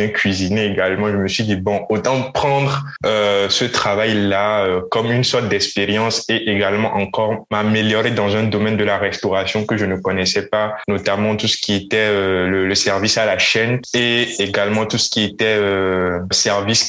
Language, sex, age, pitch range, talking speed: French, male, 20-39, 100-115 Hz, 185 wpm